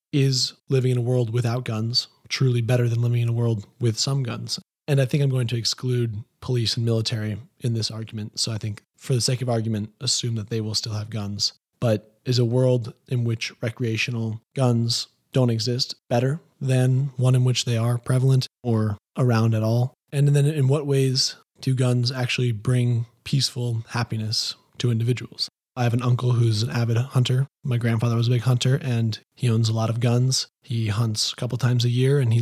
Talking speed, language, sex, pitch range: 205 wpm, English, male, 115-125 Hz